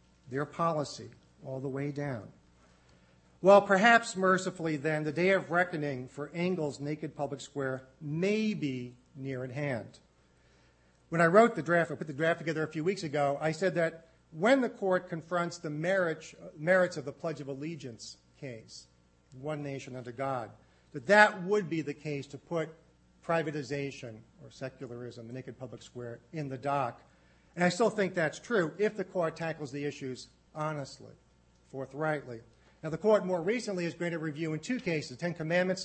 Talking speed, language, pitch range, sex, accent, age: 170 wpm, English, 130-170 Hz, male, American, 50-69